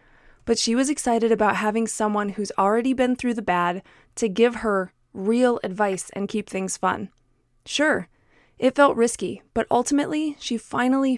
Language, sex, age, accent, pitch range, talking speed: English, female, 20-39, American, 205-245 Hz, 160 wpm